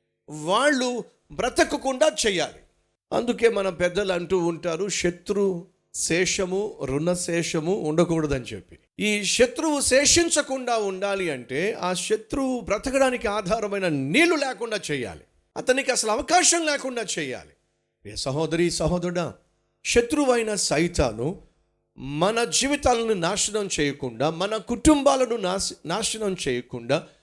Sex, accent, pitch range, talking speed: male, native, 165-255 Hz, 95 wpm